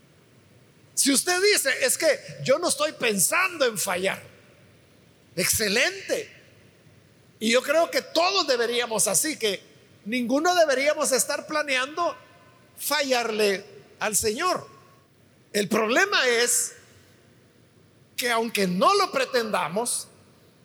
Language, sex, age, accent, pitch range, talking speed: Spanish, male, 50-69, Mexican, 215-305 Hz, 100 wpm